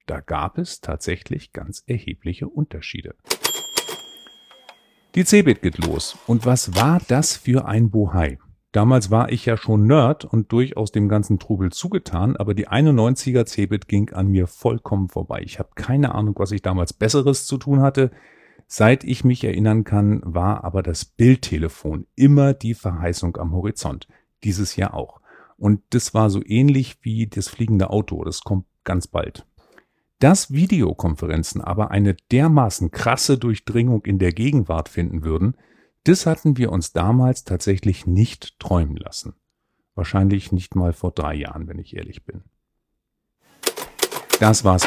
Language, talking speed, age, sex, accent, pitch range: German, 150 wpm, 40-59, male, German, 90-125 Hz